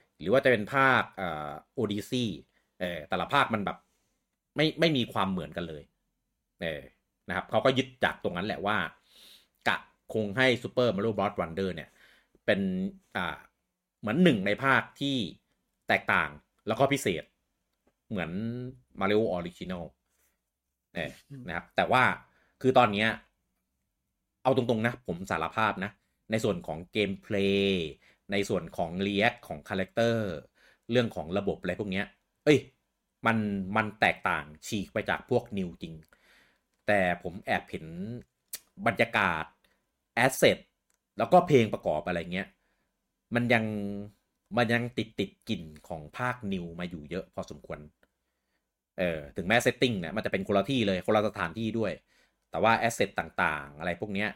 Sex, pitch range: male, 90-120 Hz